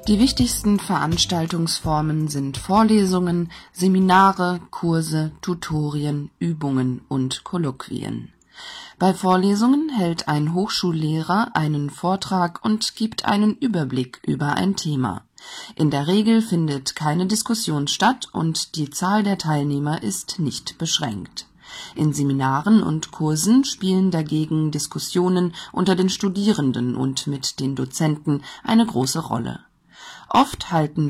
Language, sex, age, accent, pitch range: Chinese, female, 40-59, German, 150-195 Hz